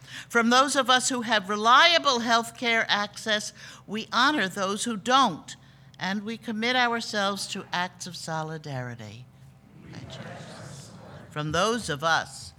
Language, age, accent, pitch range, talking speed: English, 60-79, American, 145-220 Hz, 130 wpm